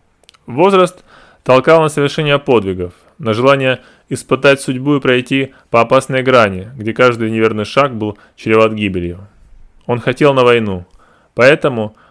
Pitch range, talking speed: 110-140 Hz, 130 wpm